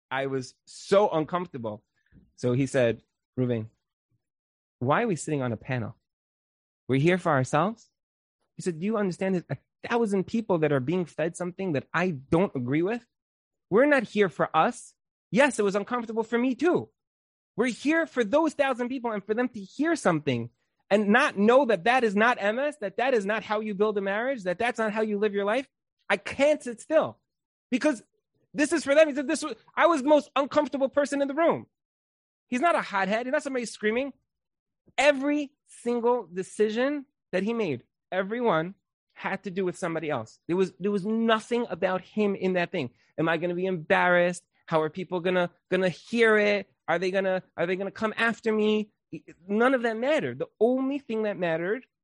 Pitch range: 165-240 Hz